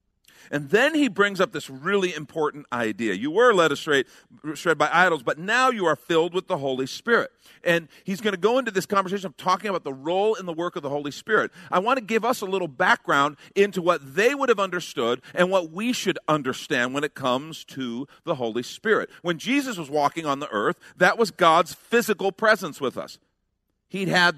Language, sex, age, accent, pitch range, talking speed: English, male, 50-69, American, 140-195 Hz, 210 wpm